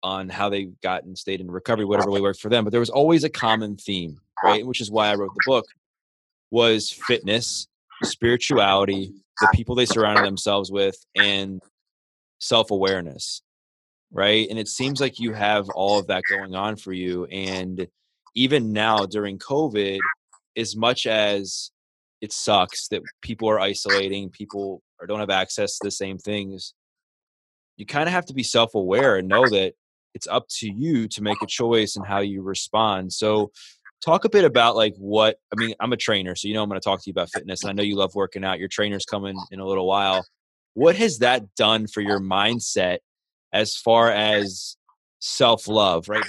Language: English